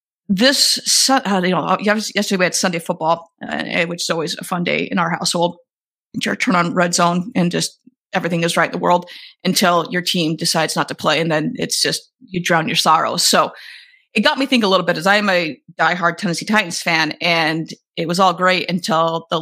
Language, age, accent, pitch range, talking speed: English, 30-49, American, 170-205 Hz, 215 wpm